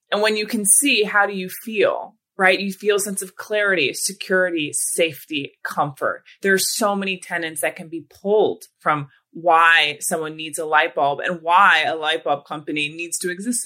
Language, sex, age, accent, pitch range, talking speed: English, female, 20-39, American, 165-210 Hz, 190 wpm